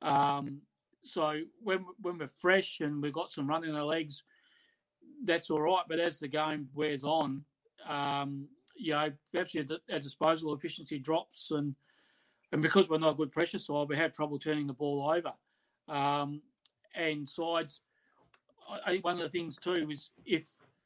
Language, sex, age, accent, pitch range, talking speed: English, male, 30-49, Australian, 150-170 Hz, 165 wpm